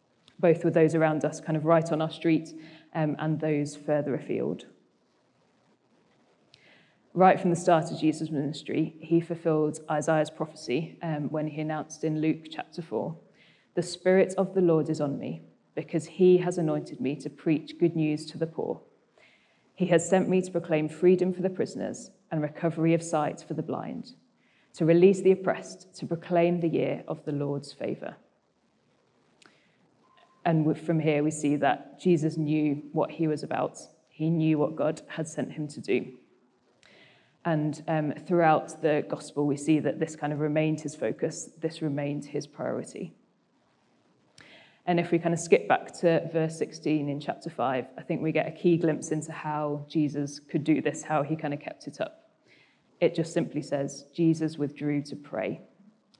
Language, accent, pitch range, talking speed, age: English, British, 150-170 Hz, 175 wpm, 20-39